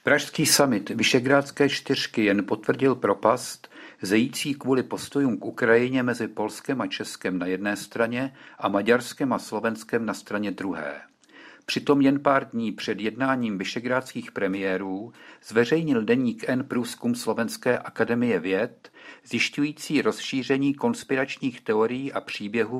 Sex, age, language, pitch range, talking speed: male, 50-69, Czech, 110-140 Hz, 125 wpm